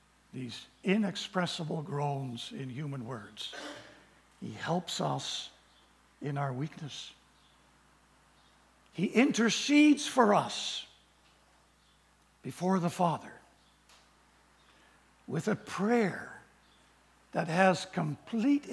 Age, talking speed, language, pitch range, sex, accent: 60-79, 80 wpm, English, 125-190 Hz, male, American